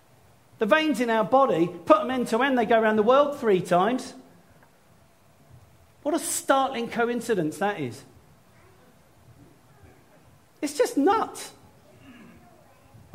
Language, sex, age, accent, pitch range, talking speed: English, male, 40-59, British, 145-220 Hz, 120 wpm